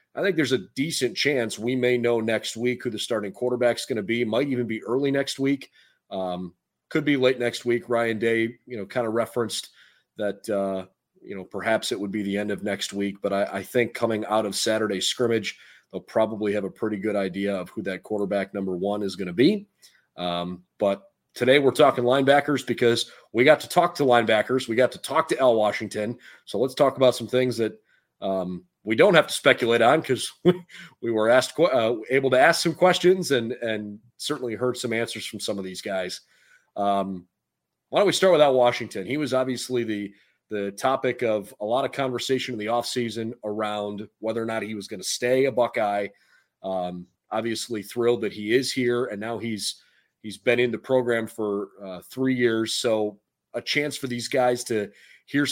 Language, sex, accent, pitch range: English, male, American, 105-125 Hz